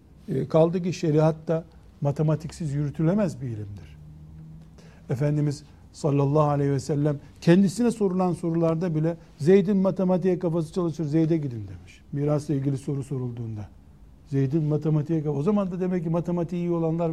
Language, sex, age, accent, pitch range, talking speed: Turkish, male, 60-79, native, 135-185 Hz, 135 wpm